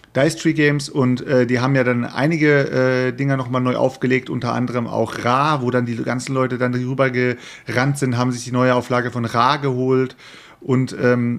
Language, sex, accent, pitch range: German, male, German, 120-140 Hz